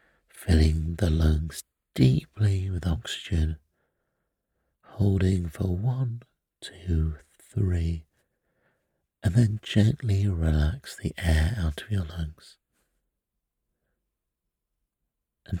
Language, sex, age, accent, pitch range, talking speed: English, male, 50-69, British, 80-95 Hz, 85 wpm